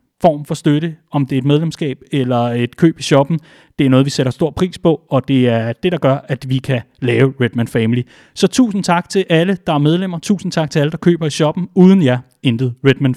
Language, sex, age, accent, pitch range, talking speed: Danish, male, 30-49, native, 140-190 Hz, 245 wpm